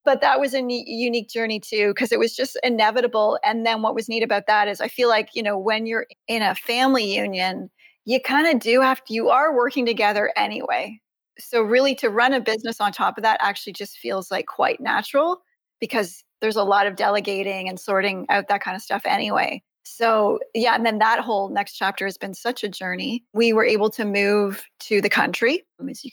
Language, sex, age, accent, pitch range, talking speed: English, female, 30-49, American, 205-245 Hz, 220 wpm